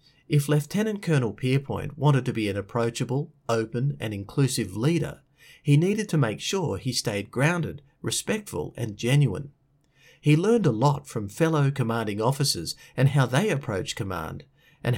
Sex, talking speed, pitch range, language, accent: male, 150 wpm, 115-150 Hz, English, Australian